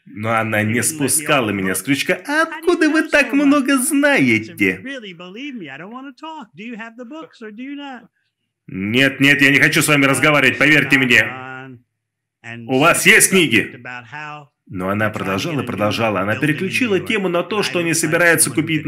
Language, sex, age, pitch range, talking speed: Russian, male, 20-39, 130-200 Hz, 125 wpm